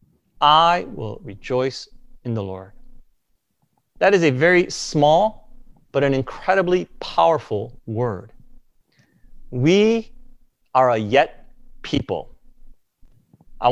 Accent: American